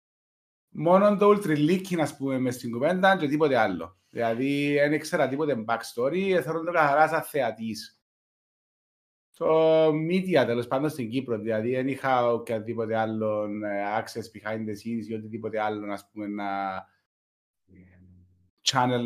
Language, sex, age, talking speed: Greek, male, 30-49, 125 wpm